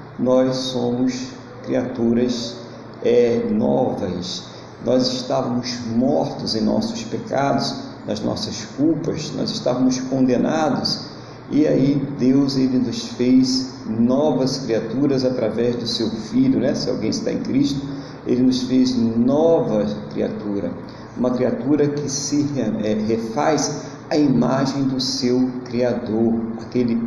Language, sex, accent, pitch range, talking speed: Portuguese, male, Brazilian, 120-140 Hz, 110 wpm